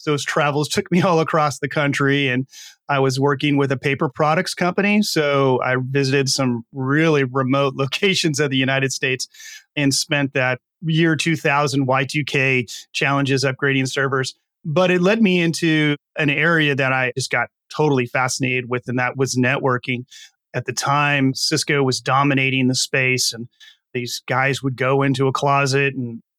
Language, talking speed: English, 165 wpm